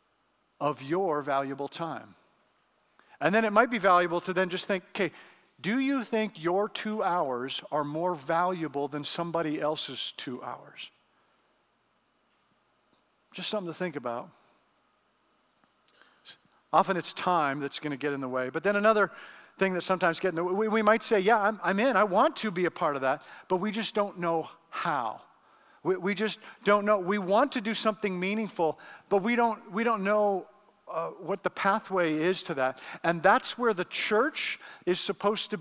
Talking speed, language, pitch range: 175 wpm, English, 170-215 Hz